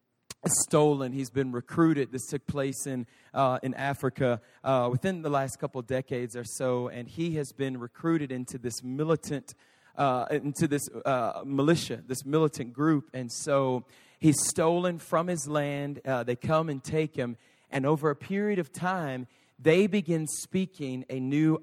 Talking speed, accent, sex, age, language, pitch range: 165 wpm, American, male, 30-49, English, 130-160 Hz